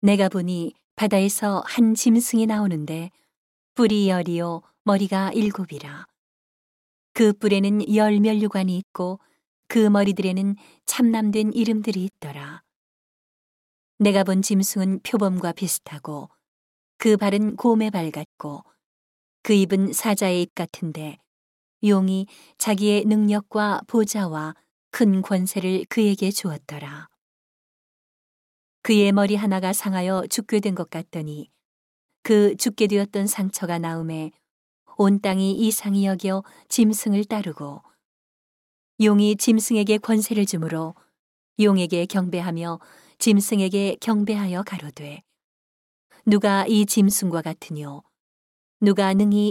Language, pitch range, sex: Korean, 180-215 Hz, female